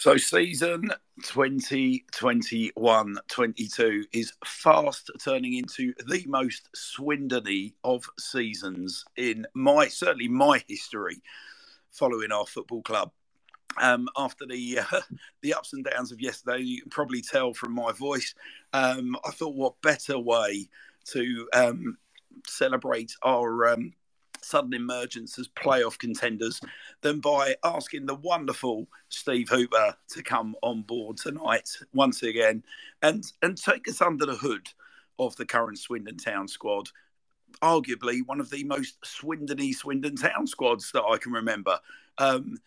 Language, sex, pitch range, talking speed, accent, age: English, male, 120-155 Hz, 135 wpm, British, 50-69